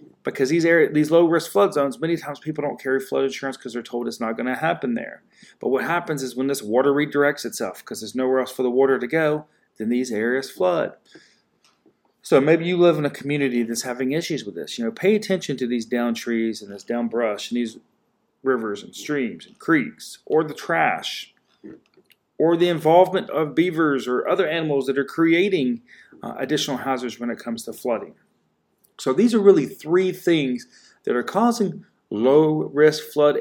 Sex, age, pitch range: male, 30-49, 125-165 Hz